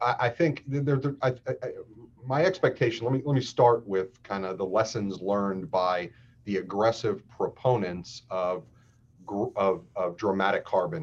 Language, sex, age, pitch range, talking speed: English, male, 40-59, 95-120 Hz, 150 wpm